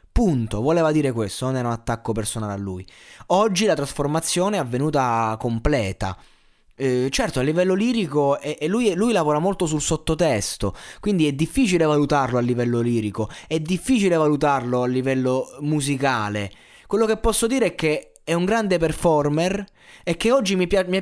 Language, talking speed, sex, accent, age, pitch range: Italian, 165 wpm, male, native, 20-39, 125-180 Hz